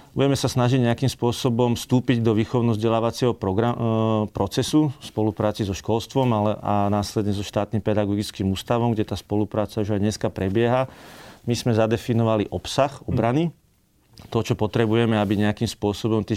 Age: 40-59